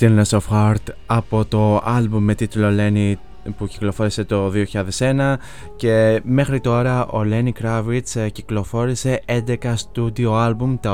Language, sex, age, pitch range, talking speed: Greek, male, 20-39, 105-120 Hz, 130 wpm